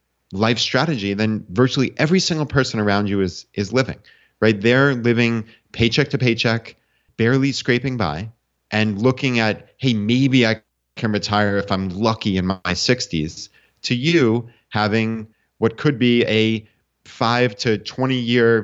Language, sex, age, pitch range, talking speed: English, male, 30-49, 105-130 Hz, 150 wpm